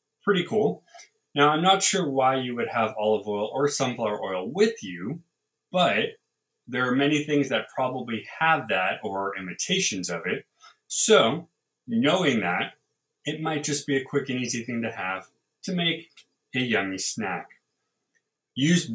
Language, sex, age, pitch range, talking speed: English, male, 20-39, 110-165 Hz, 160 wpm